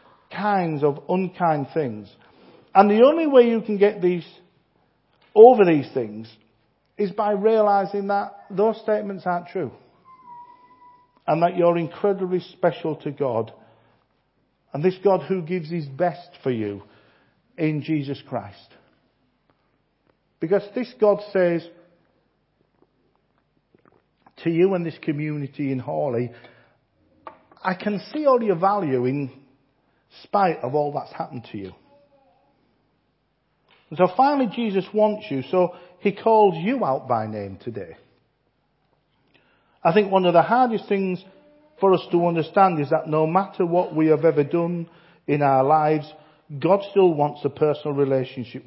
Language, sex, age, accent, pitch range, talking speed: English, male, 50-69, British, 140-200 Hz, 135 wpm